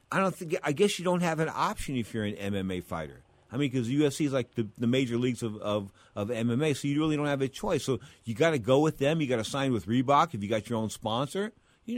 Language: English